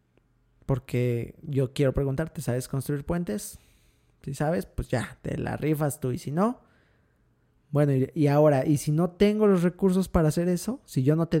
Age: 20-39